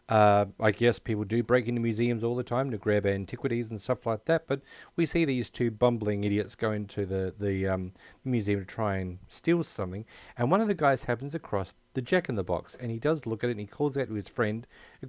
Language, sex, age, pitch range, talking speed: English, male, 40-59, 105-125 Hz, 250 wpm